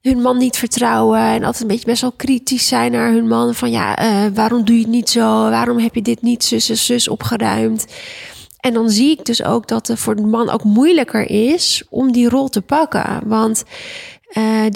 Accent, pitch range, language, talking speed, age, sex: Dutch, 220-250 Hz, Dutch, 220 wpm, 20-39, female